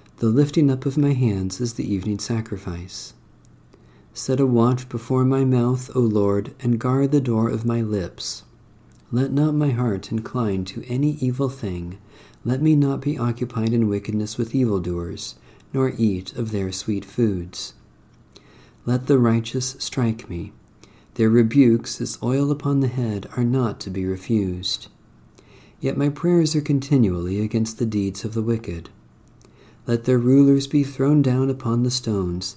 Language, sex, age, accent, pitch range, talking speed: English, male, 50-69, American, 105-130 Hz, 160 wpm